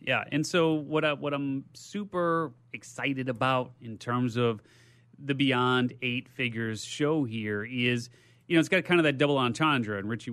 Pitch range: 120-150 Hz